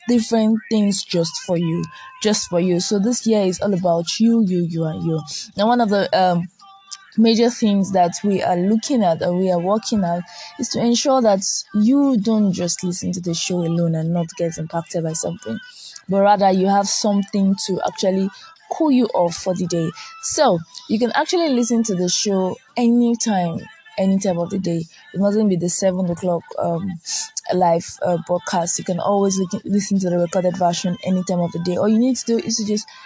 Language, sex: English, female